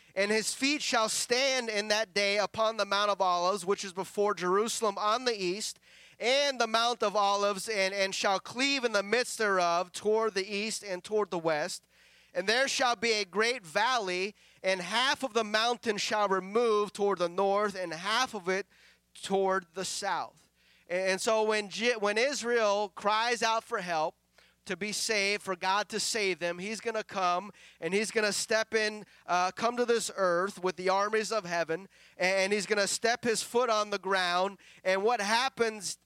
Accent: American